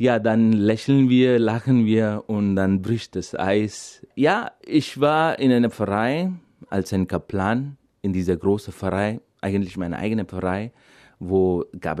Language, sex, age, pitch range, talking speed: German, male, 30-49, 90-115 Hz, 150 wpm